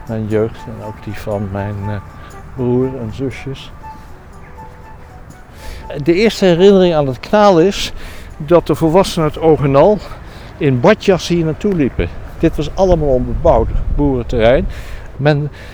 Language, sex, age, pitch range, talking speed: English, male, 60-79, 110-165 Hz, 125 wpm